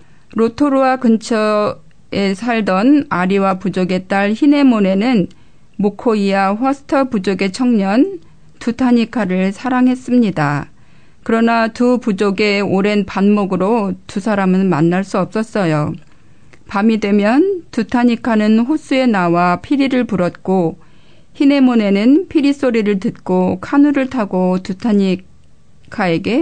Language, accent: Korean, native